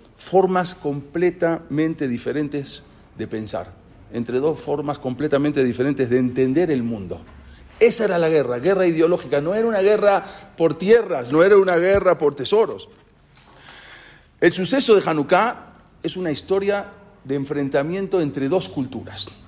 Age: 40-59